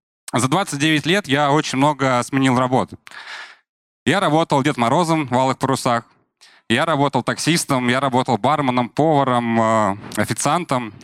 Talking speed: 125 wpm